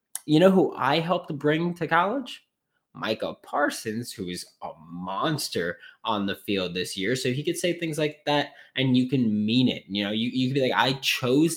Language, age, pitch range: English, 20-39, 105-145 Hz